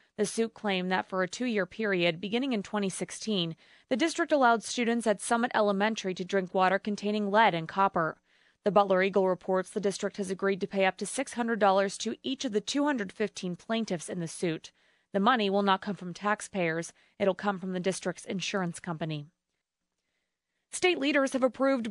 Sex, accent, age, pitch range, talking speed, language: female, American, 30-49, 185-230 Hz, 175 wpm, English